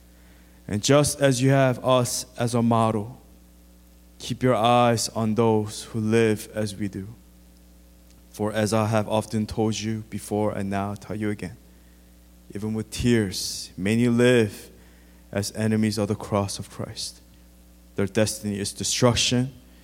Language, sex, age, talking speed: English, male, 20-39, 150 wpm